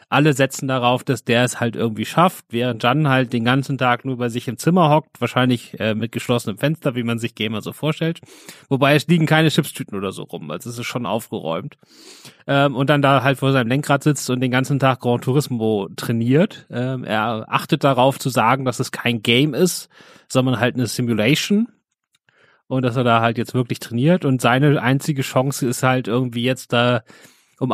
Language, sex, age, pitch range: German, male, 30-49, 120-140 Hz